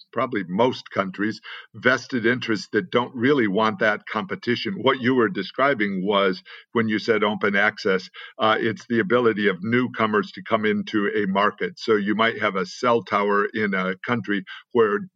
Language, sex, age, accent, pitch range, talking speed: English, male, 50-69, American, 105-130 Hz, 170 wpm